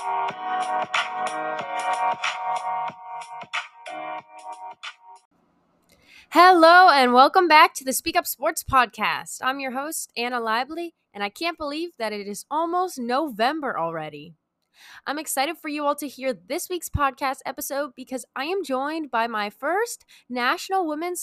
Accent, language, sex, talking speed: American, English, female, 125 wpm